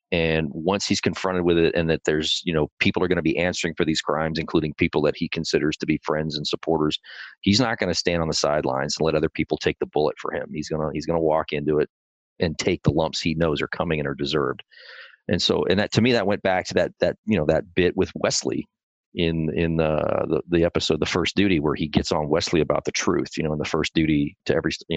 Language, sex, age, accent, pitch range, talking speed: English, male, 40-59, American, 80-95 Hz, 265 wpm